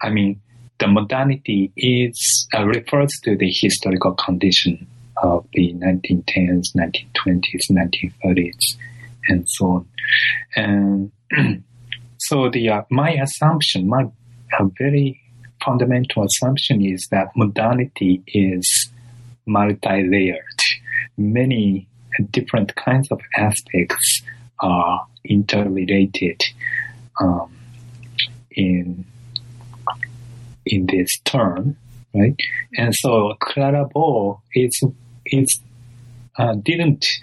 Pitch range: 100-125 Hz